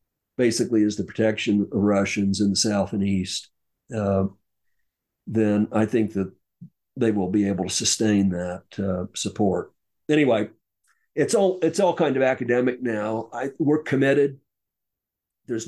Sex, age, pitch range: male, 50-69, 100-120 Hz